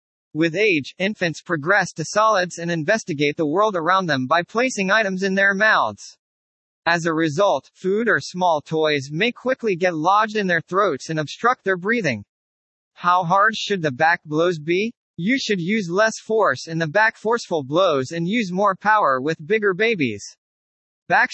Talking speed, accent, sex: 170 wpm, American, male